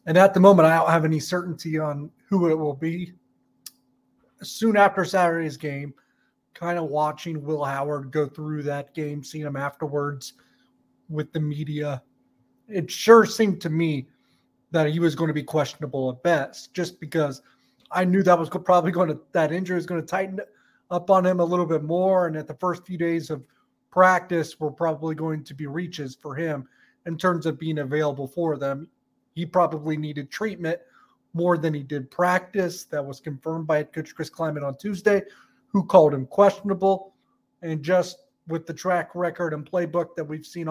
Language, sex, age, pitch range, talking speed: English, male, 30-49, 150-180 Hz, 185 wpm